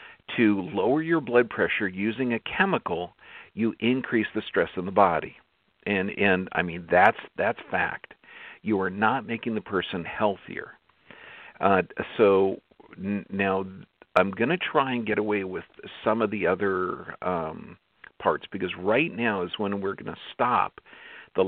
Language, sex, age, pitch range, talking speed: English, male, 50-69, 95-115 Hz, 160 wpm